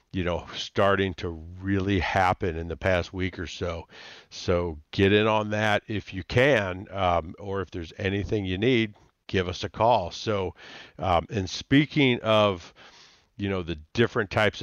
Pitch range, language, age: 90-105 Hz, English, 50-69